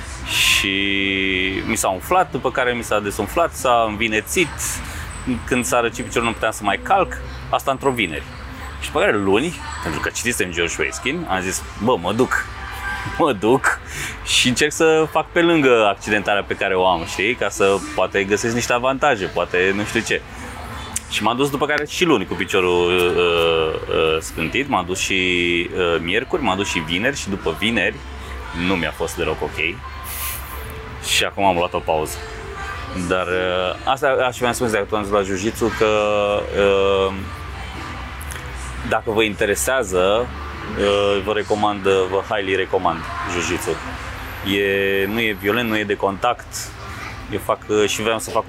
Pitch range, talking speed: 85-110 Hz, 160 wpm